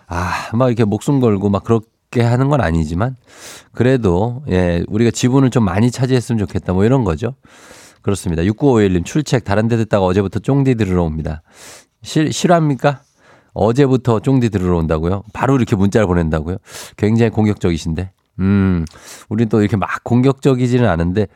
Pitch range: 95-130 Hz